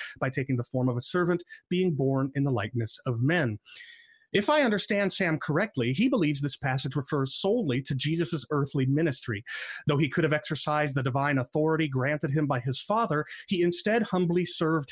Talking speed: 185 wpm